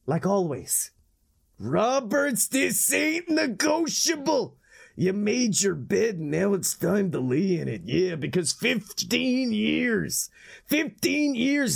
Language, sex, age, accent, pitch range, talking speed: English, male, 30-49, American, 140-195 Hz, 120 wpm